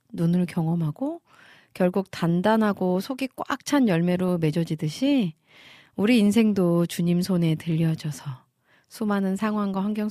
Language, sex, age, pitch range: Korean, female, 40-59, 160-240 Hz